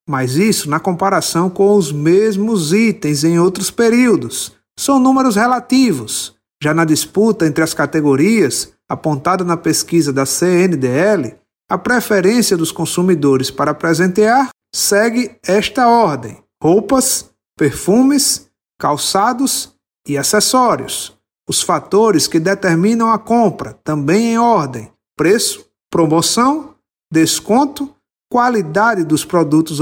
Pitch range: 150-230 Hz